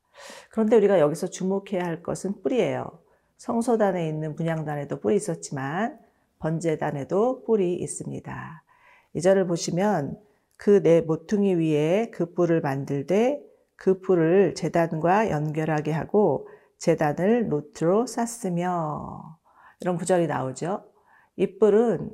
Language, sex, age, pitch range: Korean, female, 40-59, 155-210 Hz